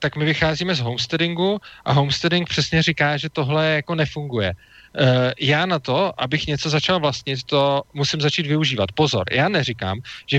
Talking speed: 165 wpm